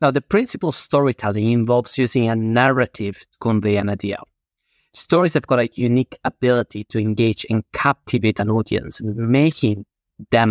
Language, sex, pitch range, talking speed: English, male, 110-130 Hz, 155 wpm